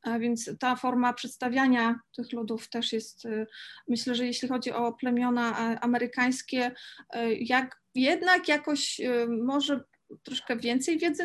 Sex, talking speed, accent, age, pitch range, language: female, 125 wpm, native, 30-49, 240-270 Hz, Polish